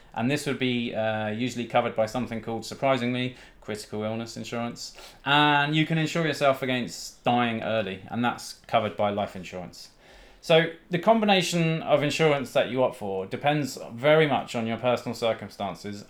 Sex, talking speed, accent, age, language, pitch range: male, 165 wpm, British, 20-39, English, 110-135 Hz